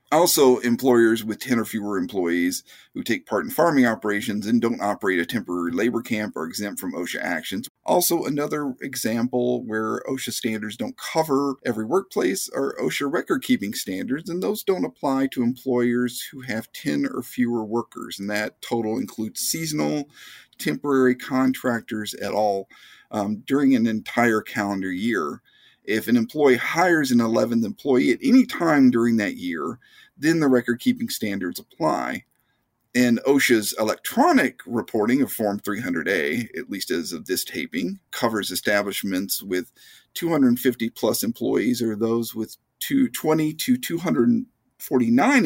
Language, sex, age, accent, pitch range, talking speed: English, male, 50-69, American, 110-145 Hz, 145 wpm